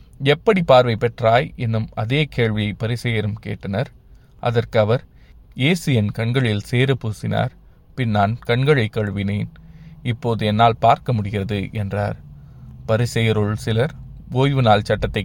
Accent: native